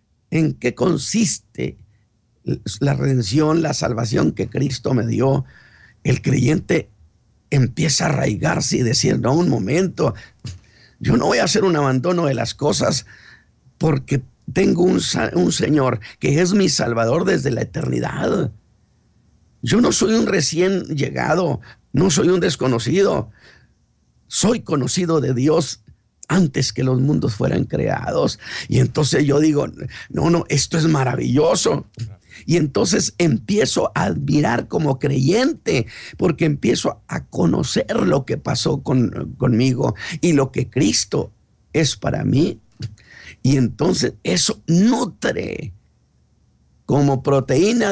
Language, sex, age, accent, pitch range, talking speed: Spanish, male, 50-69, Mexican, 125-170 Hz, 125 wpm